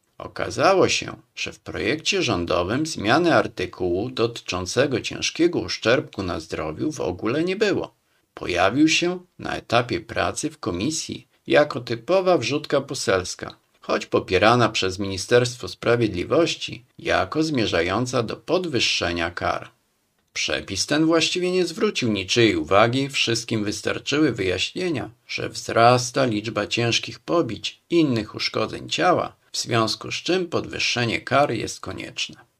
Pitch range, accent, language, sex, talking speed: 100-150 Hz, native, Polish, male, 120 wpm